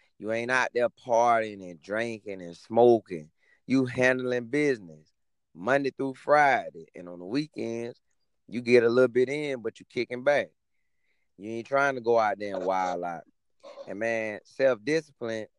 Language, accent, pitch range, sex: English, American, 110-130 Hz, male